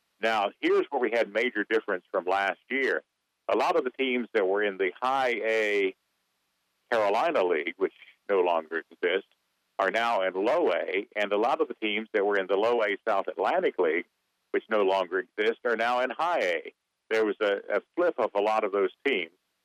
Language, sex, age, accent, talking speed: English, male, 60-79, American, 205 wpm